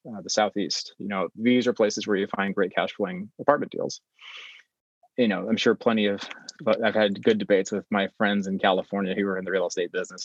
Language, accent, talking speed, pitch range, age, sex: English, American, 225 wpm, 100-125 Hz, 30-49, male